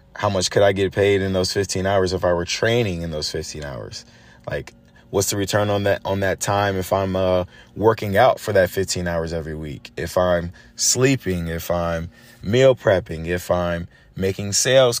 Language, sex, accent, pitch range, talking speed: English, male, American, 85-100 Hz, 195 wpm